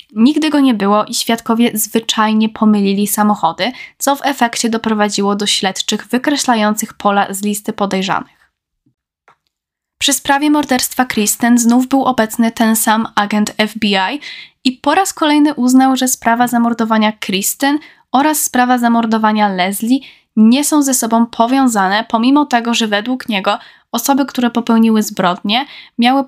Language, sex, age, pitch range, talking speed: Polish, female, 10-29, 215-255 Hz, 135 wpm